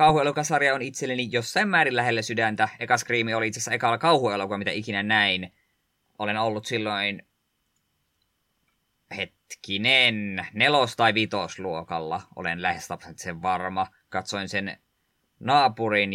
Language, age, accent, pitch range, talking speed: Finnish, 20-39, native, 100-125 Hz, 115 wpm